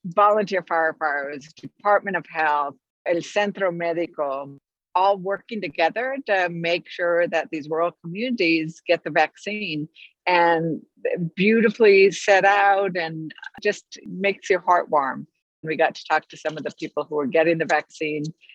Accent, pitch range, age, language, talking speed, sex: American, 155-205 Hz, 60-79, English, 145 wpm, female